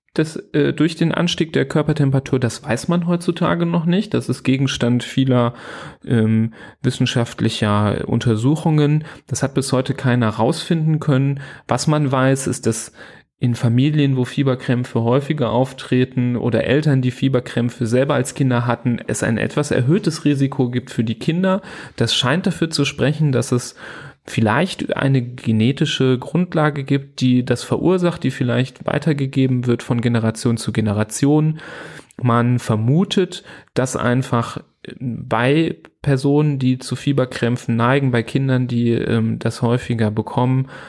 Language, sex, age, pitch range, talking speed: German, male, 30-49, 120-150 Hz, 140 wpm